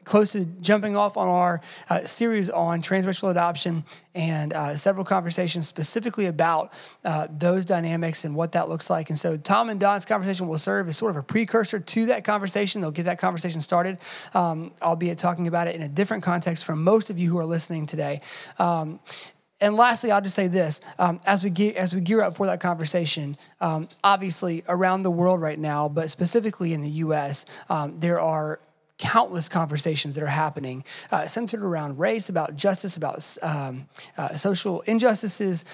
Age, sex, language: 20-39, male, English